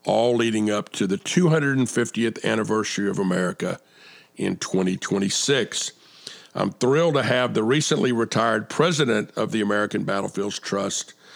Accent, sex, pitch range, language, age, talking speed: American, male, 105-130 Hz, English, 50-69, 125 wpm